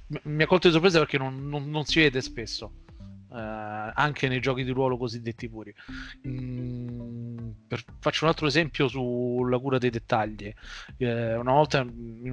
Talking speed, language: 165 wpm, Italian